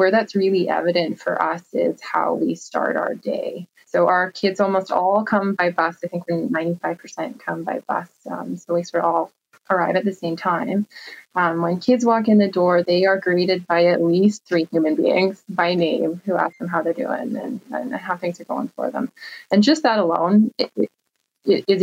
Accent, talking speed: American, 205 wpm